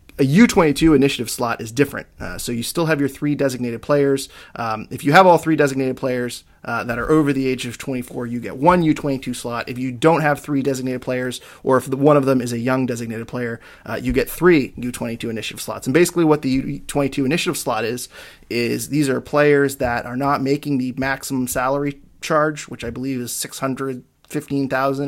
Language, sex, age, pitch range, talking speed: English, male, 30-49, 120-145 Hz, 205 wpm